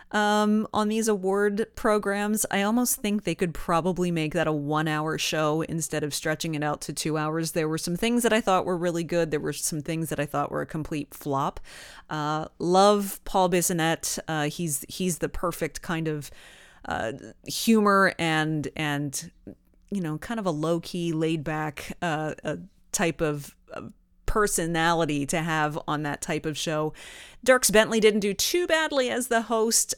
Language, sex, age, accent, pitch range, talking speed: English, female, 30-49, American, 155-195 Hz, 175 wpm